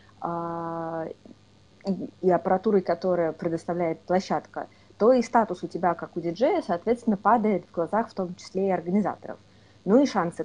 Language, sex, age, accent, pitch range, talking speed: Russian, female, 20-39, native, 165-195 Hz, 150 wpm